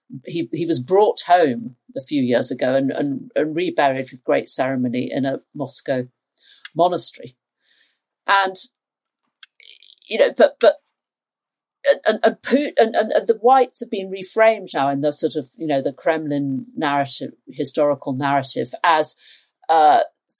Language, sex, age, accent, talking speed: English, female, 50-69, British, 140 wpm